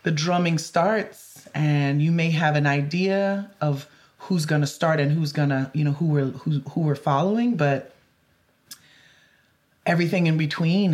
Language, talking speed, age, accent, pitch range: English, 165 wpm, 30-49, American, 145-170 Hz